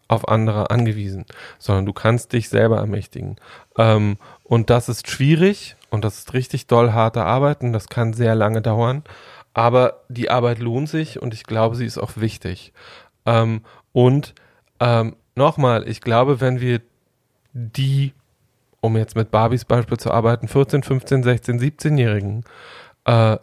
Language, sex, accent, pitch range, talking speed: German, male, German, 115-135 Hz, 155 wpm